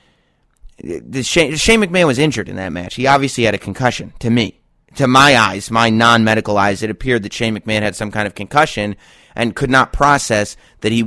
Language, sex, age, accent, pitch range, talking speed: English, male, 30-49, American, 115-160 Hz, 195 wpm